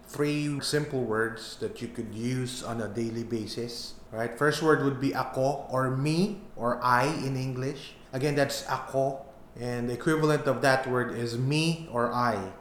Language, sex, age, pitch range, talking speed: Filipino, male, 20-39, 120-135 Hz, 170 wpm